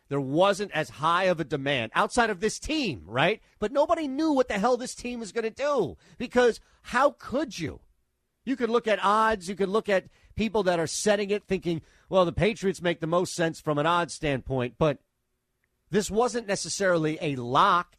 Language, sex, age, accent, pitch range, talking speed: English, male, 40-59, American, 135-185 Hz, 200 wpm